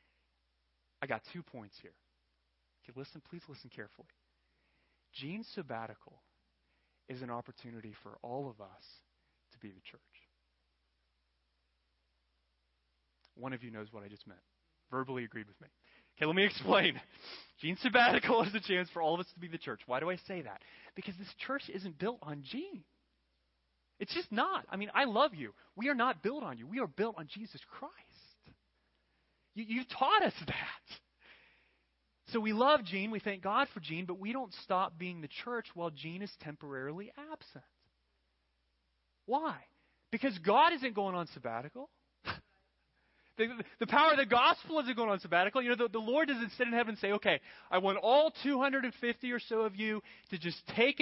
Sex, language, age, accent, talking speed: male, English, 30-49, American, 175 wpm